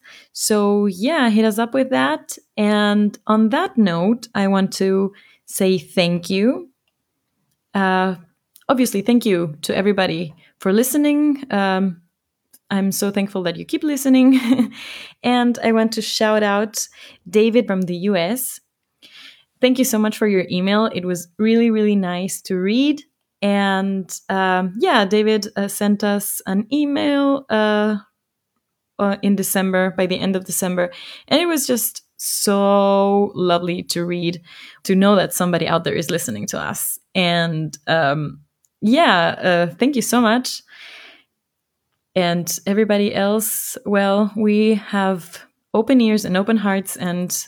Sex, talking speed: female, 145 wpm